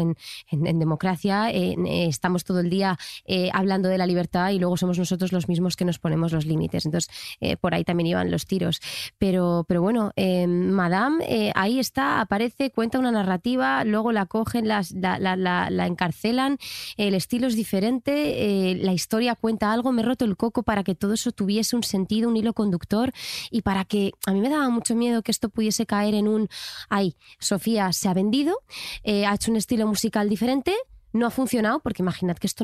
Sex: female